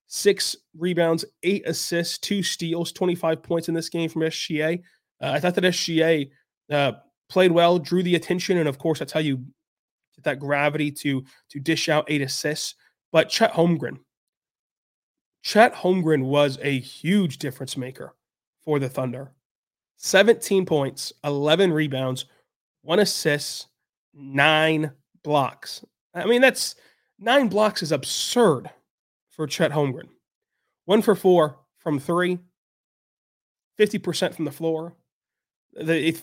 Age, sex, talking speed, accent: 30-49, male, 135 wpm, American